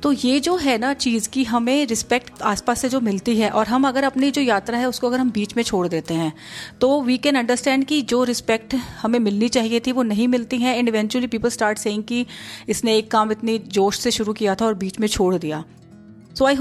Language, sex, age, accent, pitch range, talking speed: Hindi, female, 30-49, native, 205-260 Hz, 240 wpm